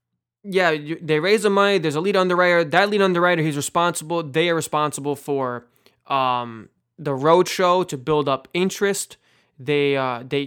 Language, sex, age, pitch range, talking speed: English, male, 20-39, 140-180 Hz, 160 wpm